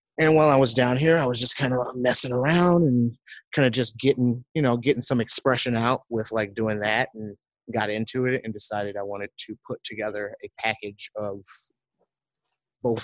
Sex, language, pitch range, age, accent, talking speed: male, English, 105-125 Hz, 30-49, American, 200 wpm